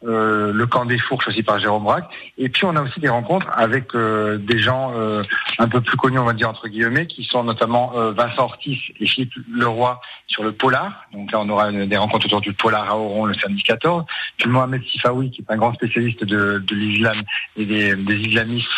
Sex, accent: male, French